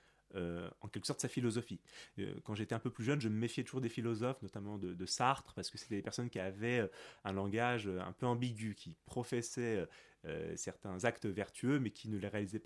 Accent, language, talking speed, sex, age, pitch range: French, French, 220 wpm, male, 30-49, 95-120 Hz